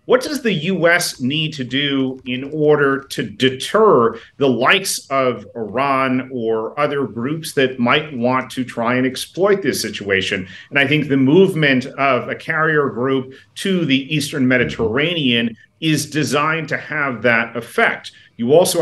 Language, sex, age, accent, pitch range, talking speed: English, male, 40-59, American, 130-160 Hz, 155 wpm